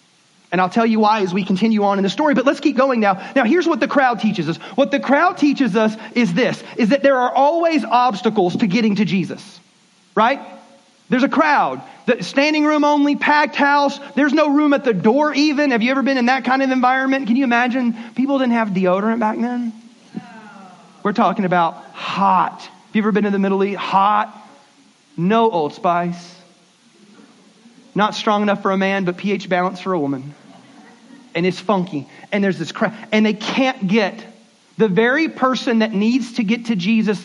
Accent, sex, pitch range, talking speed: American, male, 195-255 Hz, 200 wpm